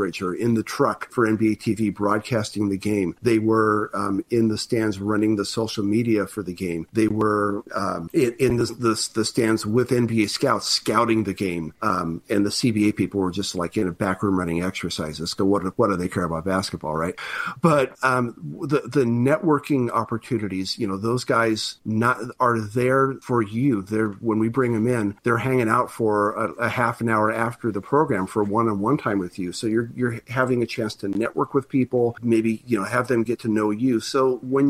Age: 50-69